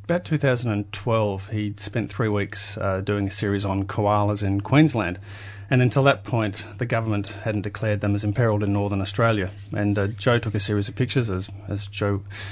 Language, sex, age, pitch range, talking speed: English, male, 30-49, 100-110 Hz, 185 wpm